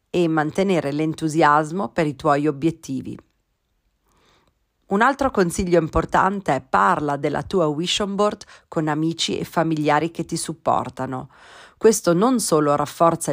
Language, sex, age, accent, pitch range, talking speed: Italian, female, 40-59, native, 150-185 Hz, 130 wpm